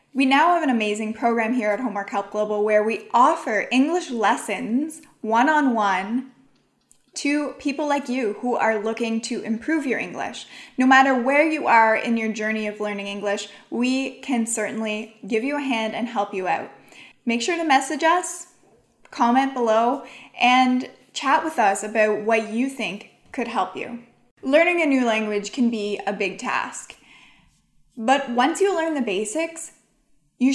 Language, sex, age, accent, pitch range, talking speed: English, female, 20-39, American, 215-270 Hz, 165 wpm